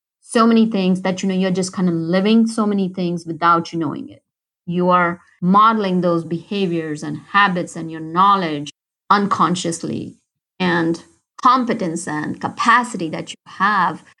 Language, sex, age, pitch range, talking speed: English, female, 30-49, 160-190 Hz, 150 wpm